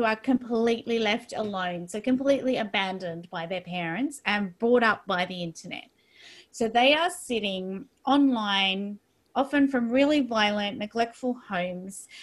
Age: 20-39